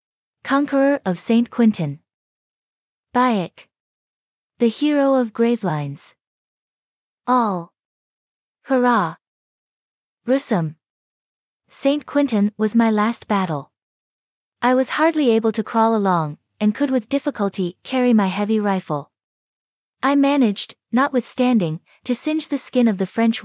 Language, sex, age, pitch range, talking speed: English, female, 20-39, 200-250 Hz, 110 wpm